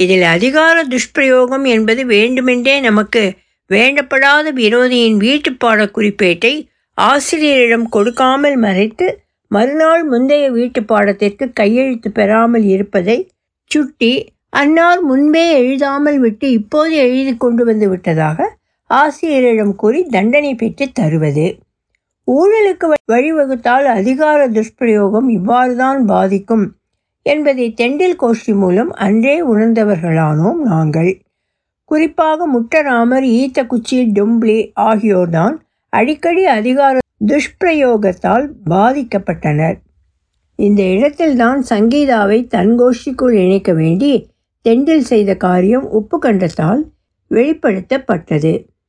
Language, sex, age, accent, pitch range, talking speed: Tamil, female, 60-79, native, 210-280 Hz, 85 wpm